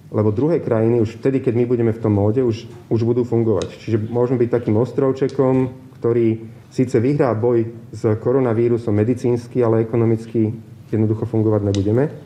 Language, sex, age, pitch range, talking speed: Slovak, male, 30-49, 110-130 Hz, 155 wpm